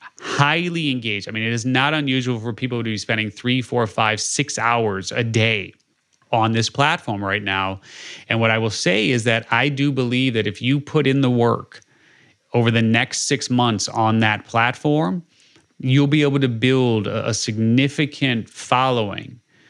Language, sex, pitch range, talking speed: English, male, 115-135 Hz, 175 wpm